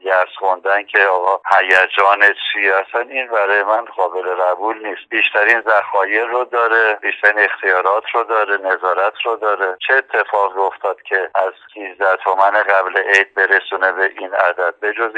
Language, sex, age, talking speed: Persian, male, 50-69, 145 wpm